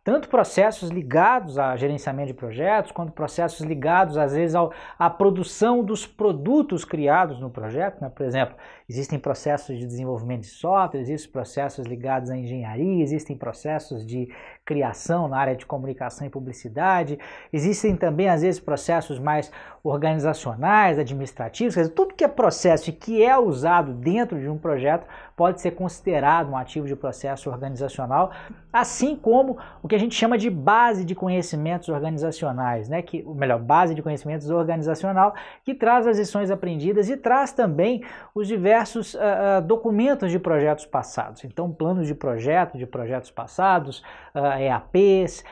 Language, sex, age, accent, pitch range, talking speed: Portuguese, male, 20-39, Brazilian, 145-205 Hz, 155 wpm